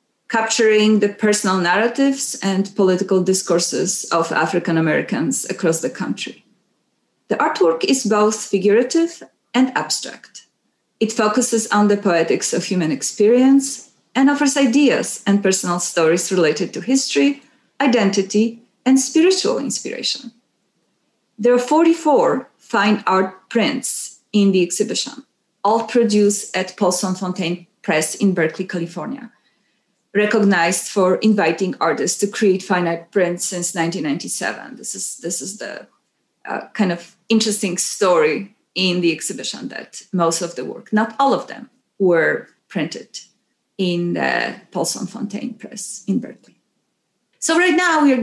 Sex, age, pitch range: female, 30-49, 185-250 Hz